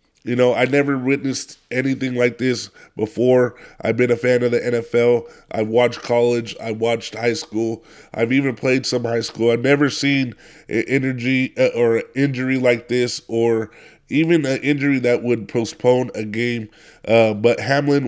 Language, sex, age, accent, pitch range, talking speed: English, male, 20-39, American, 115-130 Hz, 170 wpm